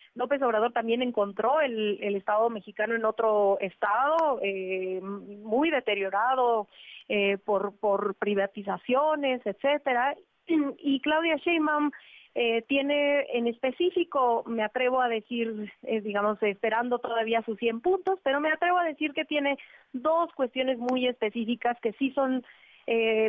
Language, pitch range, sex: Spanish, 210-260 Hz, female